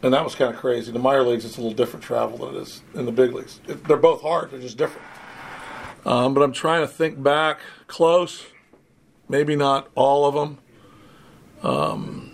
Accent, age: American, 50-69